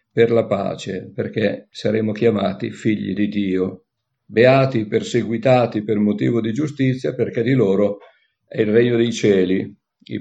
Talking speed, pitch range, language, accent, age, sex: 145 wpm, 105-130 Hz, Italian, native, 50-69, male